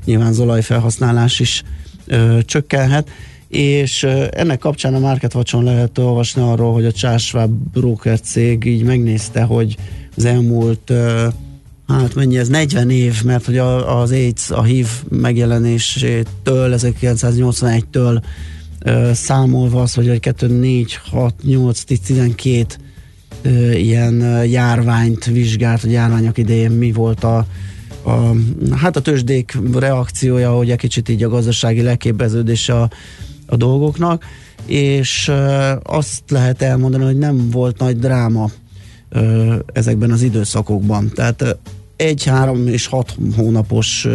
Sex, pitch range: male, 115-125 Hz